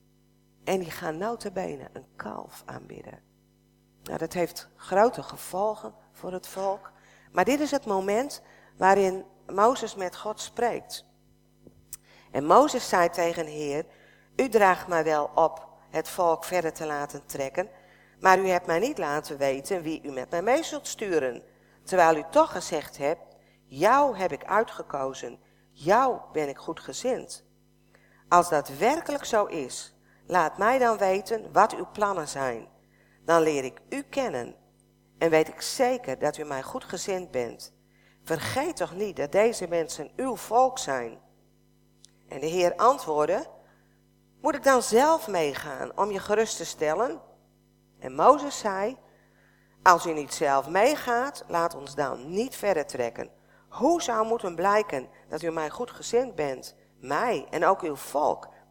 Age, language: 50-69, Dutch